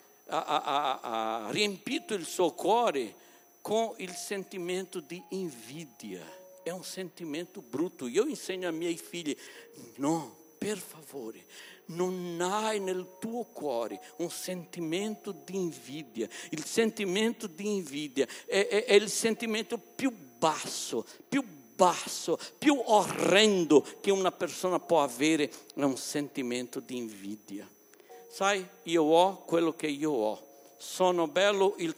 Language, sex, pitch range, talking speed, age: Italian, male, 155-210 Hz, 130 wpm, 60-79